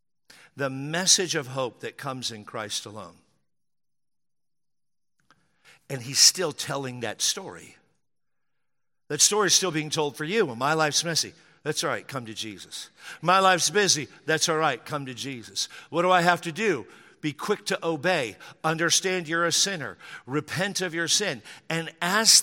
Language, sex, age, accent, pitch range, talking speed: English, male, 50-69, American, 120-165 Hz, 165 wpm